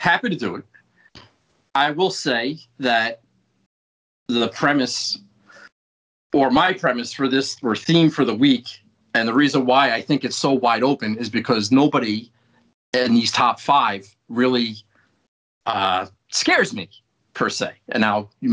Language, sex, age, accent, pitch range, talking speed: English, male, 40-59, American, 135-205 Hz, 150 wpm